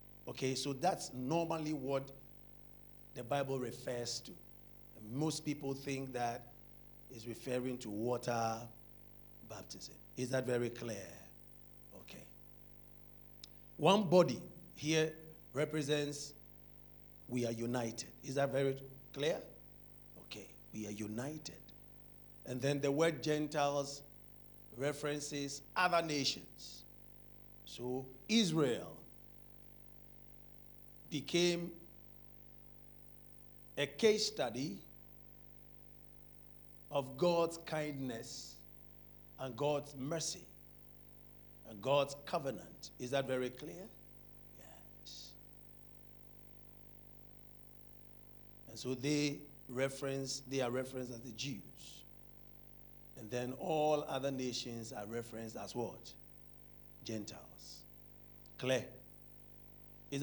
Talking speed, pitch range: 85 wpm, 125-150 Hz